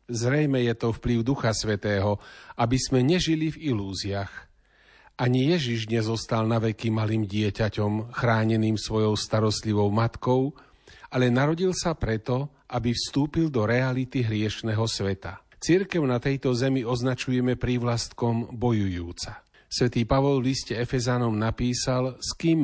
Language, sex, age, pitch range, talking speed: Slovak, male, 40-59, 110-130 Hz, 125 wpm